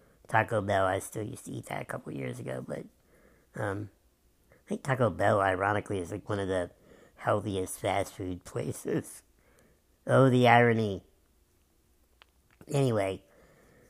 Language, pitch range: English, 100-115 Hz